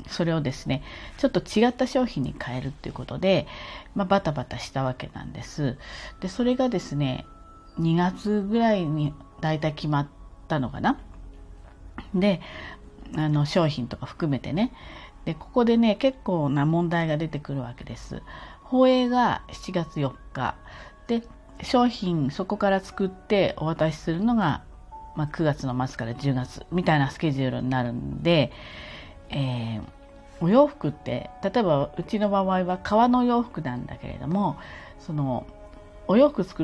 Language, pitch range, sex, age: Japanese, 130-195 Hz, female, 40-59